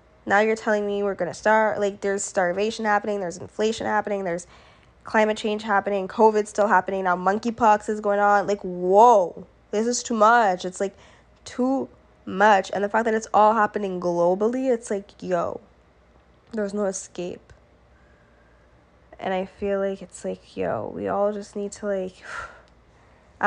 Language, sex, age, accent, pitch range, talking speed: English, female, 10-29, American, 185-210 Hz, 165 wpm